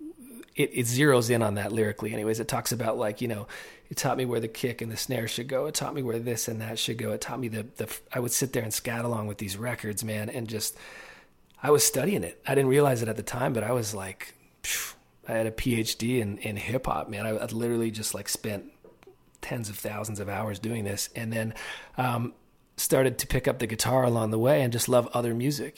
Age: 30-49